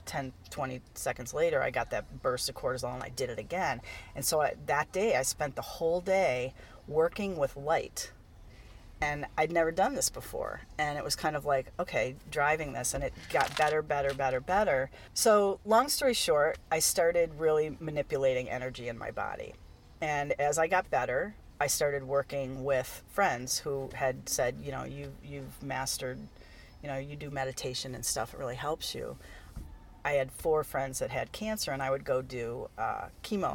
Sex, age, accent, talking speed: female, 40-59, American, 190 wpm